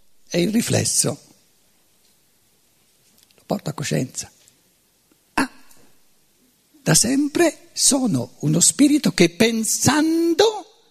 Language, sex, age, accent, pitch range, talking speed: Italian, male, 50-69, native, 190-275 Hz, 85 wpm